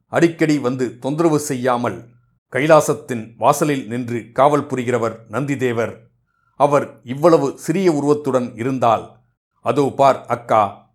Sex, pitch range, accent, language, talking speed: male, 115-145 Hz, native, Tamil, 100 wpm